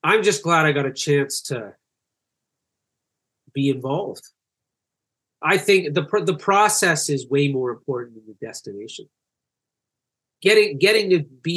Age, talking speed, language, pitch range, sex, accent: 30-49, 135 wpm, English, 135-160 Hz, male, American